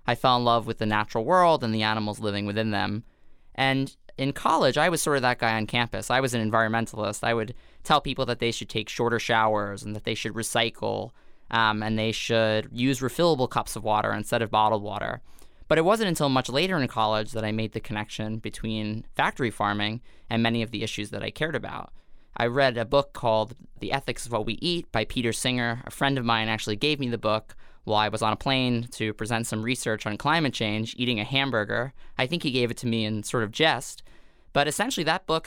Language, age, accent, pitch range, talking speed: English, 20-39, American, 110-135 Hz, 230 wpm